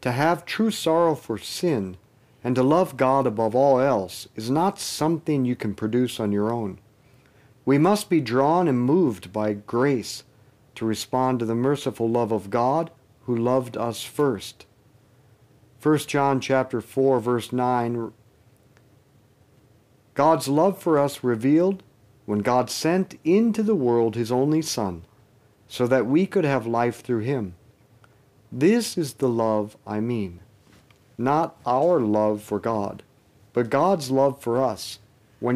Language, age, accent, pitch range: English, 50-69, American, 110-140 Hz